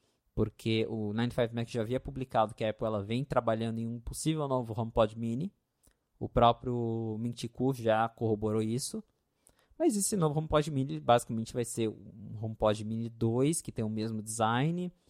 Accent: Brazilian